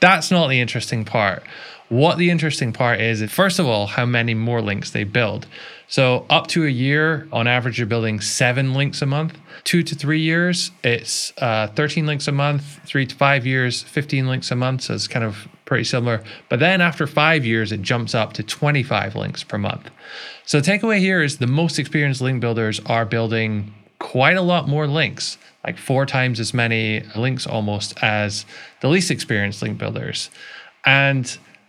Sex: male